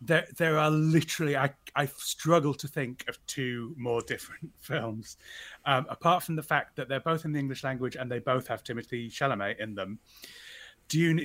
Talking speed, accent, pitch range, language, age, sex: 185 wpm, British, 115-140 Hz, English, 30-49, male